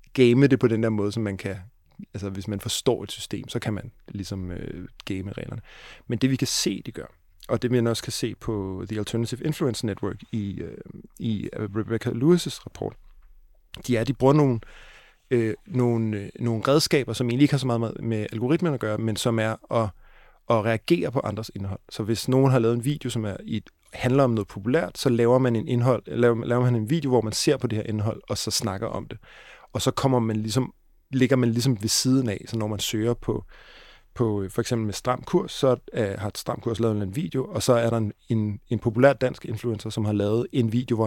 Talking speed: 230 wpm